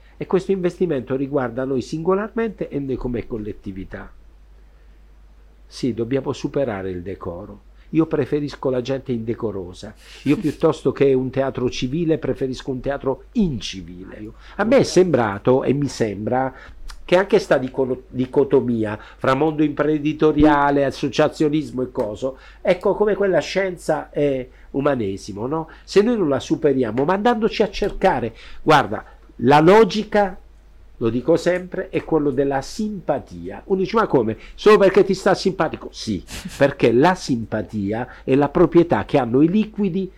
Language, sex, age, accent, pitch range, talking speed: Italian, male, 60-79, native, 115-175 Hz, 140 wpm